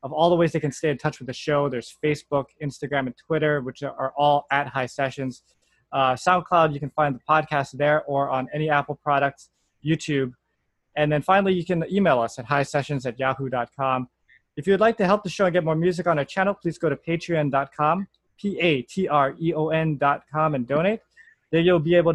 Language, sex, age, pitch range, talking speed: English, male, 20-39, 140-175 Hz, 205 wpm